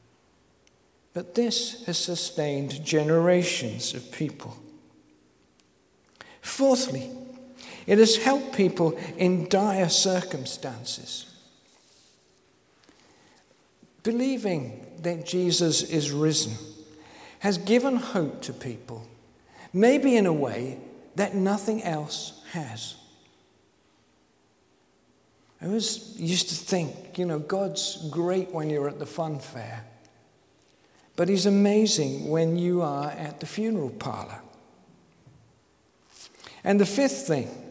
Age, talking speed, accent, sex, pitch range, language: 50-69, 100 wpm, British, male, 150-200 Hz, English